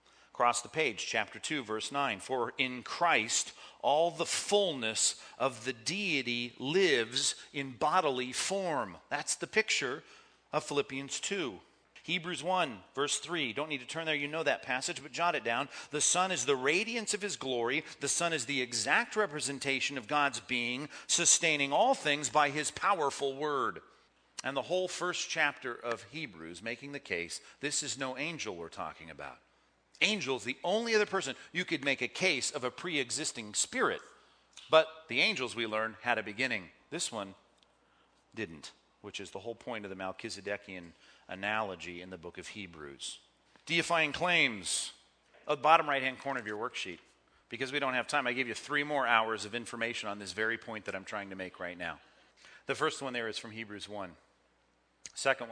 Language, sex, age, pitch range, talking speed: English, male, 40-59, 115-155 Hz, 175 wpm